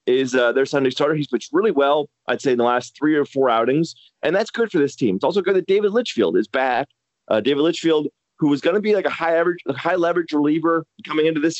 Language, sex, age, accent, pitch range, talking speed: English, male, 30-49, American, 140-195 Hz, 255 wpm